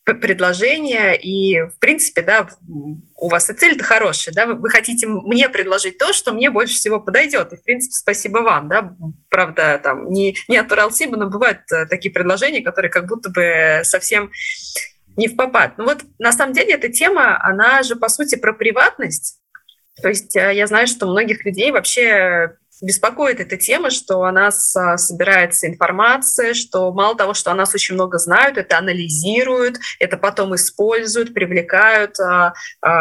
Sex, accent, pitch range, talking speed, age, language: female, native, 180-235 Hz, 165 wpm, 20-39, Russian